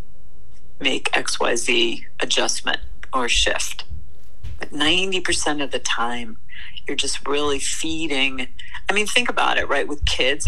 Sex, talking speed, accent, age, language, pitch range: female, 135 wpm, American, 40-59, English, 135-200 Hz